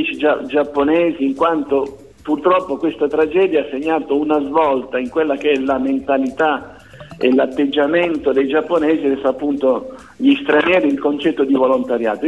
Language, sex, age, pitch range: Italian, male, 50-69, 130-160 Hz